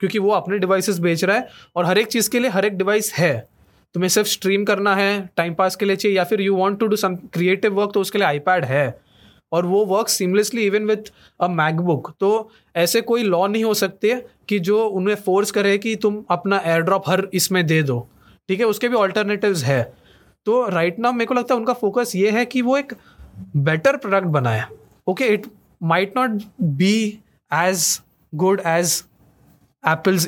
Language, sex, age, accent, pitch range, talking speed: Hindi, male, 20-39, native, 175-220 Hz, 205 wpm